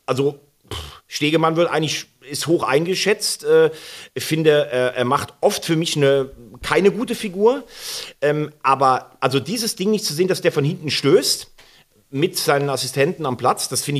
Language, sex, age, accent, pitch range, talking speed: German, male, 40-59, German, 140-220 Hz, 170 wpm